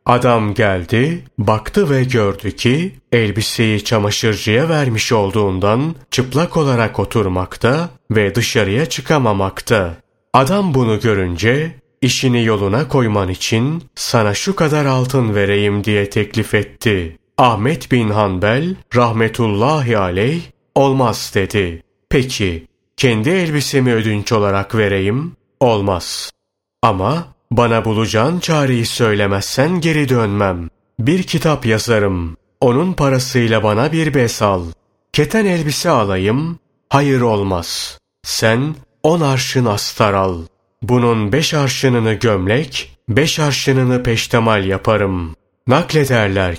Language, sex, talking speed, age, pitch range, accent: Turkish, male, 105 wpm, 30-49, 105-140 Hz, native